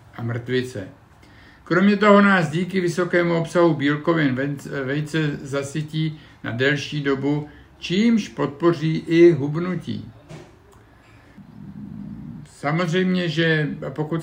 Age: 50-69